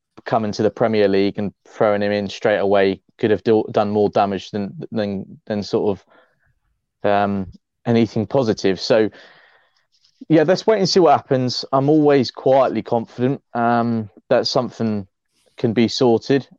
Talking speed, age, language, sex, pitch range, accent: 155 wpm, 20-39, English, male, 105-115 Hz, British